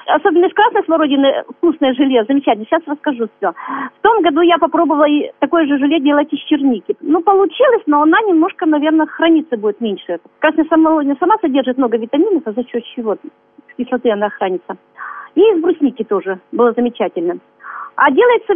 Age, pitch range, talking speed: 40-59, 255-360 Hz, 170 wpm